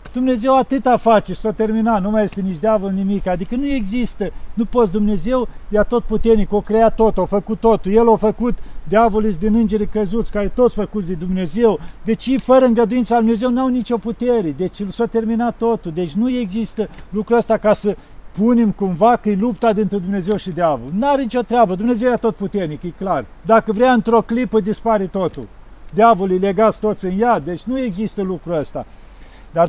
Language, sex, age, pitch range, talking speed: Romanian, male, 50-69, 175-225 Hz, 190 wpm